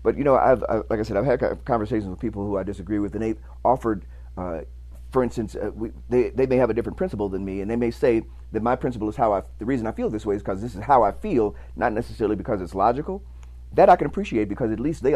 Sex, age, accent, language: male, 40-59, American, English